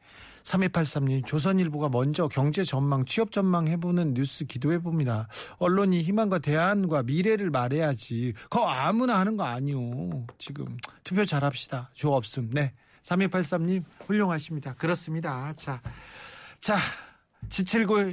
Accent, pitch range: native, 135-185 Hz